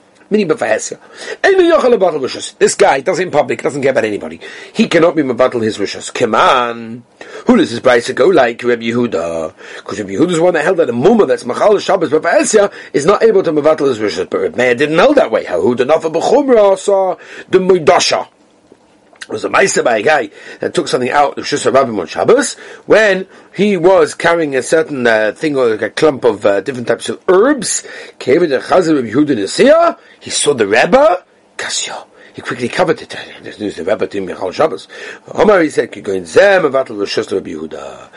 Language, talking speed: English, 185 wpm